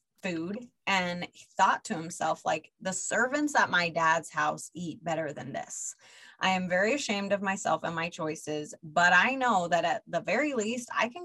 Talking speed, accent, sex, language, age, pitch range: 190 wpm, American, female, English, 20-39, 165-200 Hz